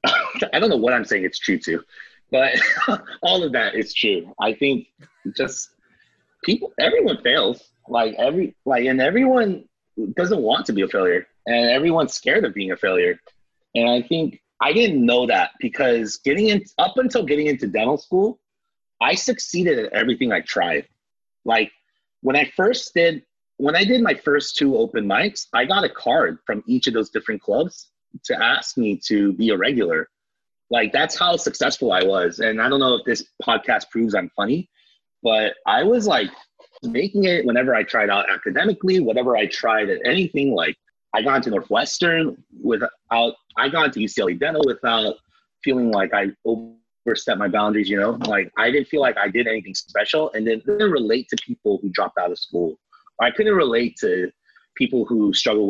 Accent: American